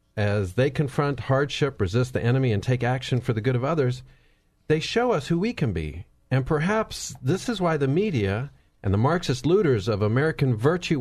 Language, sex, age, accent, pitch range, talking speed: English, male, 50-69, American, 95-145 Hz, 195 wpm